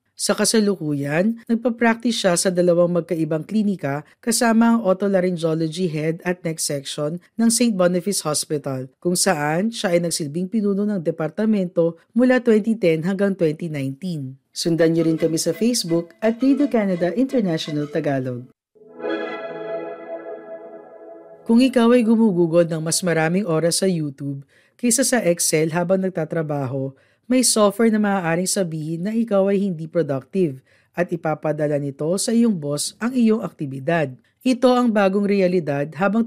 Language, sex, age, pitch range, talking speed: Filipino, female, 40-59, 150-215 Hz, 135 wpm